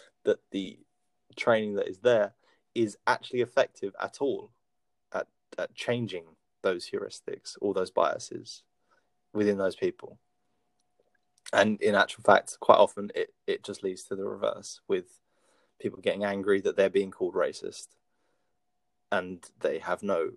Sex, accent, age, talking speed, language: male, British, 20-39, 140 wpm, English